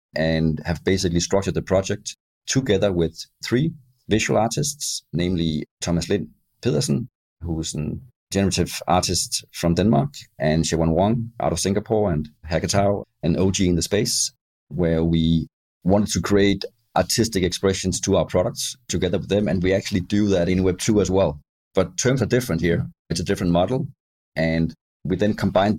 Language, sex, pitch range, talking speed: English, male, 80-105 Hz, 165 wpm